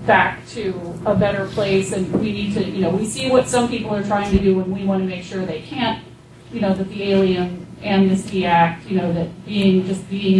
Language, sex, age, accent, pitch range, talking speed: English, female, 30-49, American, 190-215 Hz, 240 wpm